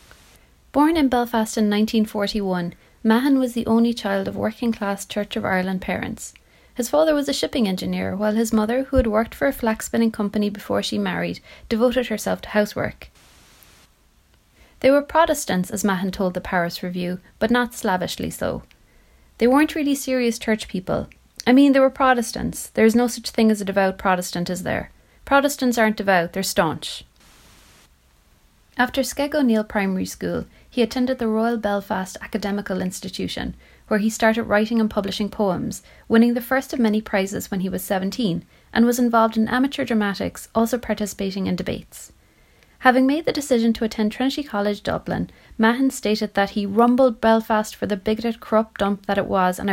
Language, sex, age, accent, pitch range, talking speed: English, female, 30-49, Irish, 190-235 Hz, 170 wpm